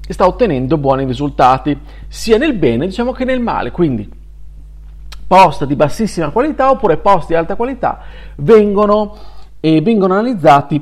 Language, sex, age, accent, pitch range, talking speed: Italian, male, 40-59, native, 135-210 Hz, 140 wpm